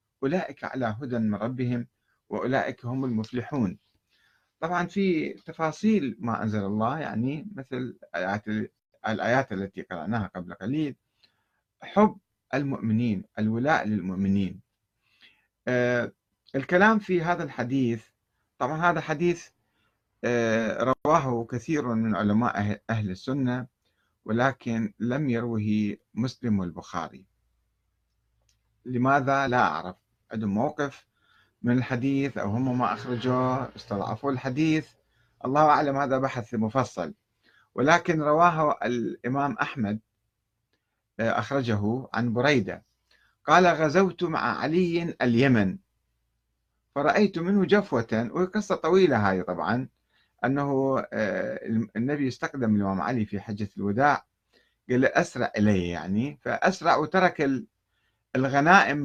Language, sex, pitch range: Arabic, male, 110-140 Hz